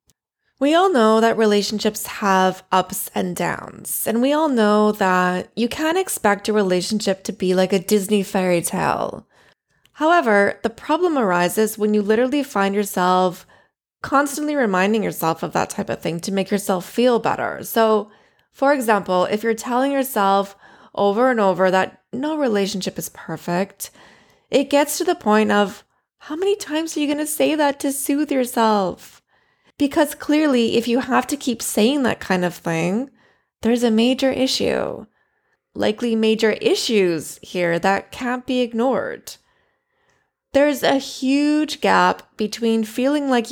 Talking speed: 155 wpm